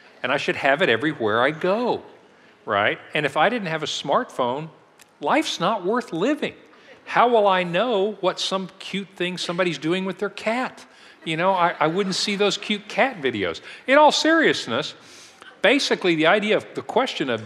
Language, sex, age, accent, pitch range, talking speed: English, male, 50-69, American, 130-215 Hz, 180 wpm